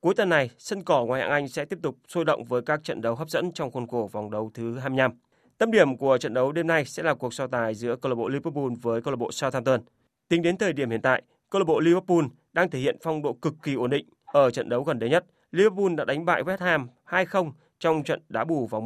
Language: Vietnamese